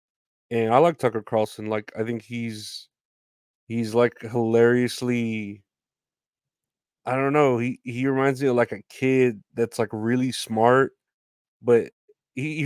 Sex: male